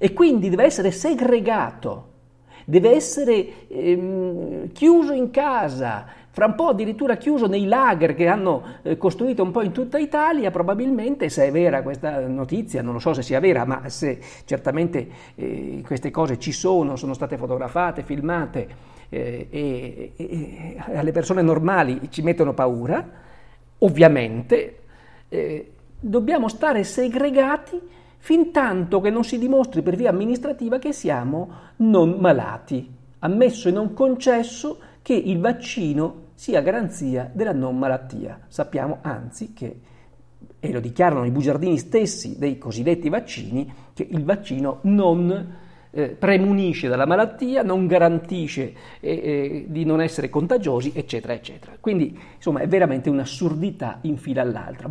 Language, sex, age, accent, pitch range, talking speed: Italian, male, 50-69, native, 140-225 Hz, 140 wpm